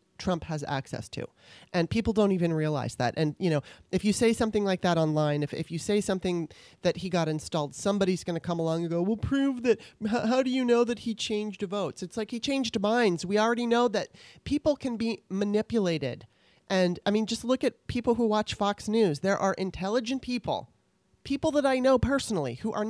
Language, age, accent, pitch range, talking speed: English, 30-49, American, 175-230 Hz, 215 wpm